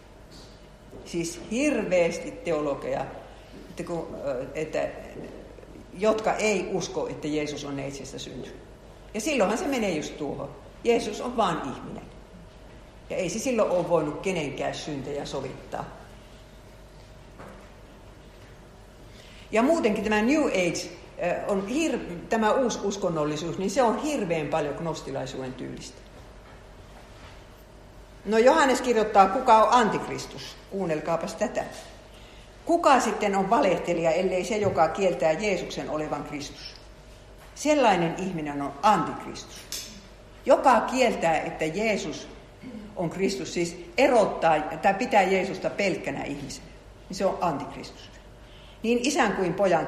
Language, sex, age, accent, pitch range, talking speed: Finnish, female, 50-69, native, 150-220 Hz, 110 wpm